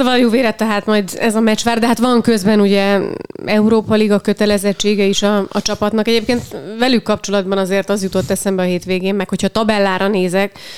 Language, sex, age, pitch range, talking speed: Hungarian, female, 30-49, 190-210 Hz, 185 wpm